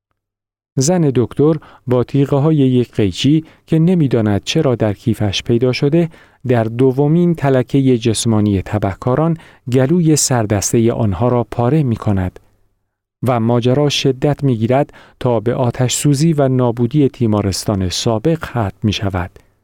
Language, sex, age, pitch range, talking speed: Persian, male, 40-59, 100-135 Hz, 120 wpm